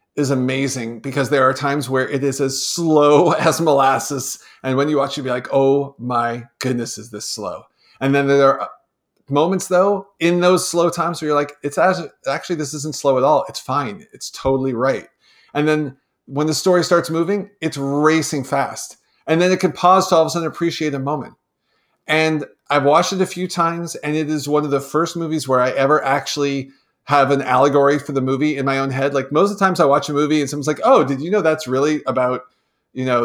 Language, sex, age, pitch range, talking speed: English, male, 40-59, 135-155 Hz, 225 wpm